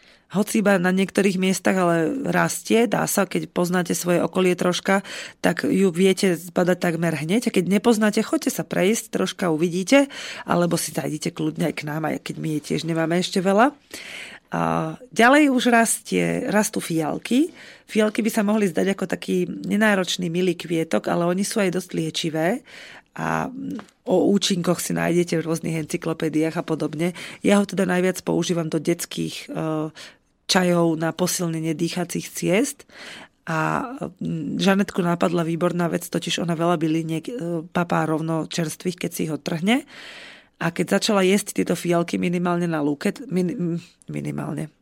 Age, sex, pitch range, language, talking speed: 30-49, female, 165-195 Hz, Slovak, 150 wpm